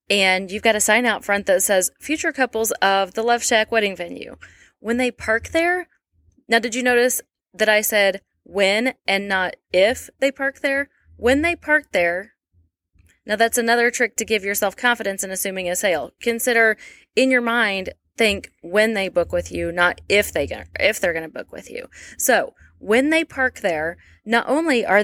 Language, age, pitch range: English, 20-39, 195-250 Hz